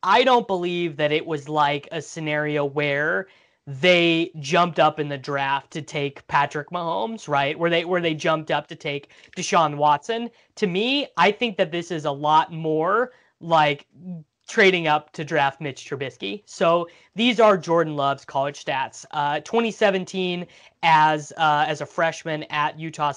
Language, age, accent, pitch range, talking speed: English, 20-39, American, 145-175 Hz, 165 wpm